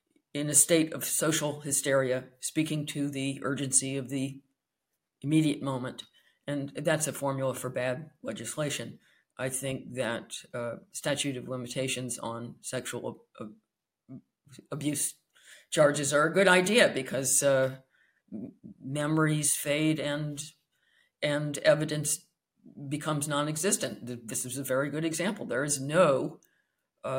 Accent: American